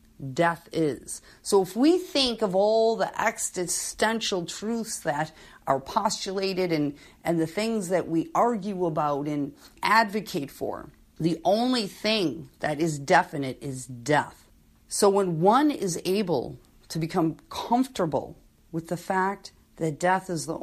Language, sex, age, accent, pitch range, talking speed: English, female, 40-59, American, 160-215 Hz, 140 wpm